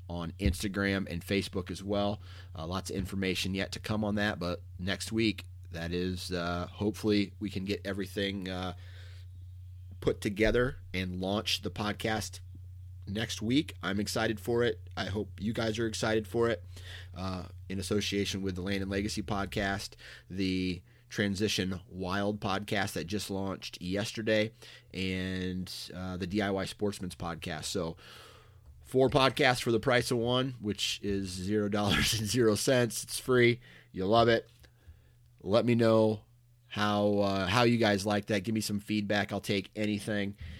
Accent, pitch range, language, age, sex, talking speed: American, 90-110 Hz, English, 30-49, male, 160 wpm